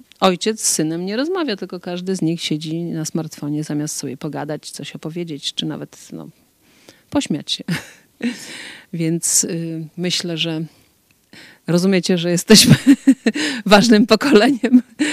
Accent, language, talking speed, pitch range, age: native, Polish, 120 wpm, 165-200 Hz, 30-49